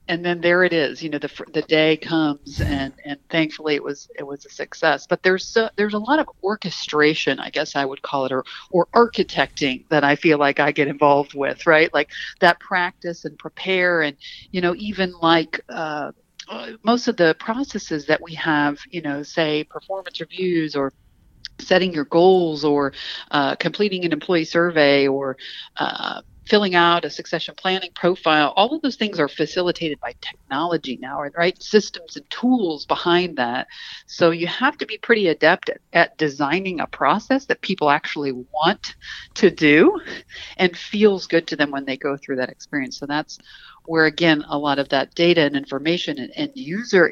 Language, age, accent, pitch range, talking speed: English, 50-69, American, 145-185 Hz, 185 wpm